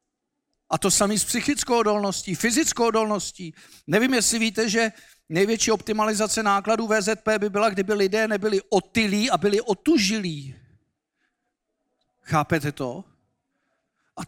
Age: 50-69